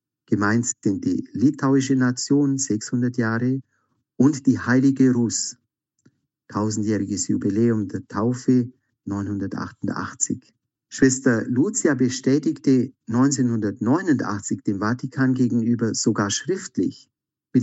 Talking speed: 90 wpm